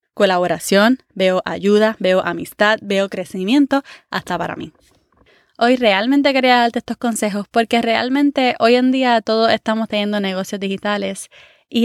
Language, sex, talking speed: Spanish, female, 135 wpm